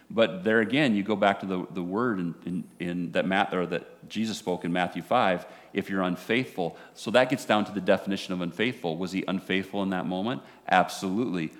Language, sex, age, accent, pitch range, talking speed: English, male, 40-59, American, 90-105 Hz, 205 wpm